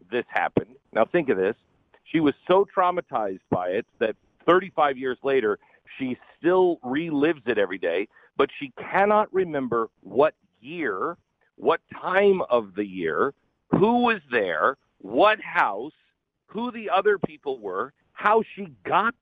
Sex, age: male, 50-69